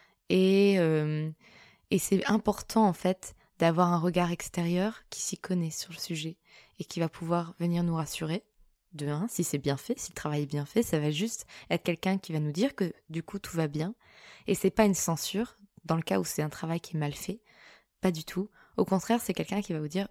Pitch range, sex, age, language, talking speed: 160-195 Hz, female, 20-39, French, 235 wpm